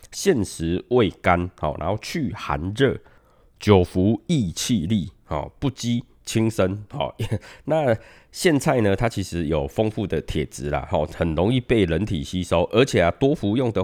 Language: Chinese